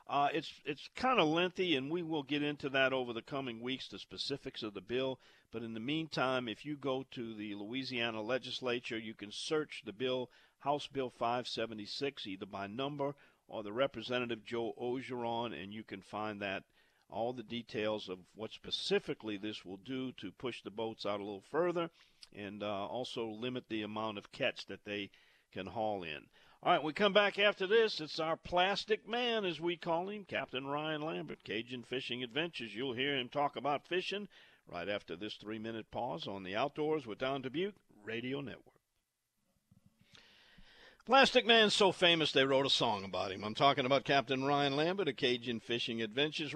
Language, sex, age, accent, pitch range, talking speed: English, male, 50-69, American, 110-145 Hz, 185 wpm